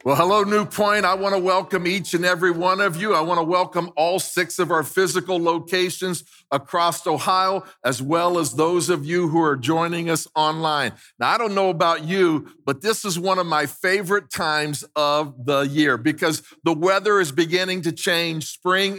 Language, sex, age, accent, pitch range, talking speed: English, male, 50-69, American, 165-195 Hz, 195 wpm